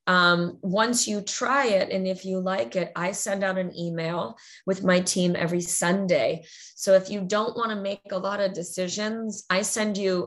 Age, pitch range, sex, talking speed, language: 20-39, 170-200 Hz, female, 200 wpm, English